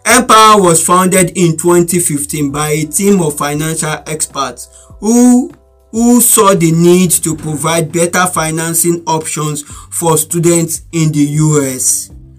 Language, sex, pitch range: English, male, 150-185 Hz